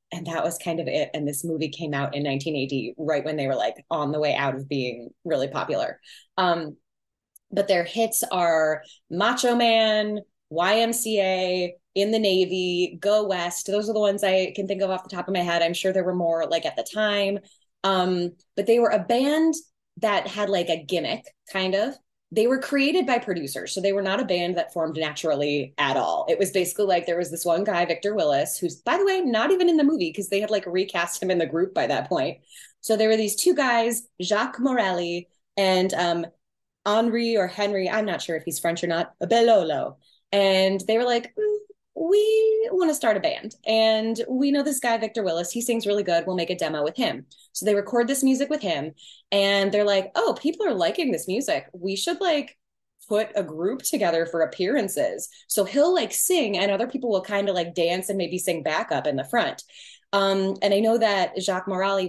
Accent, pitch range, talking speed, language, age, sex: American, 175-235 Hz, 220 wpm, English, 20-39, female